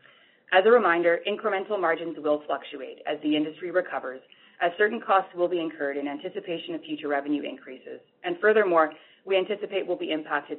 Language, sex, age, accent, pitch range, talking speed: English, female, 30-49, American, 145-190 Hz, 170 wpm